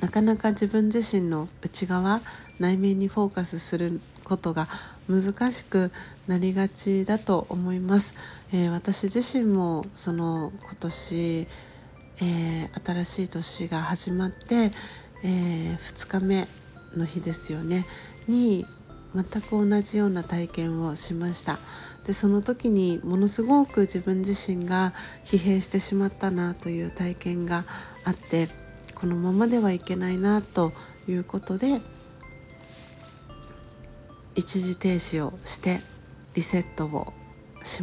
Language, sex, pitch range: Japanese, female, 175-200 Hz